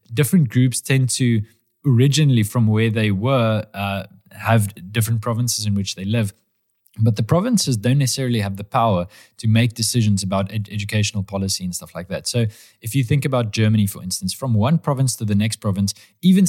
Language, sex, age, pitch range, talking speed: Hungarian, male, 20-39, 105-130 Hz, 185 wpm